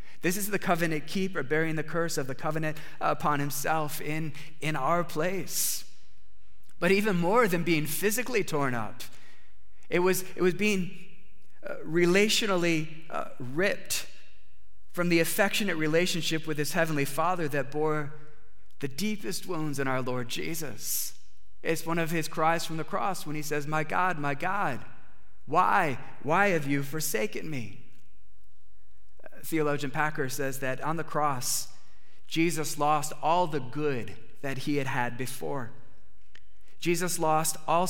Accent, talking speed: American, 145 wpm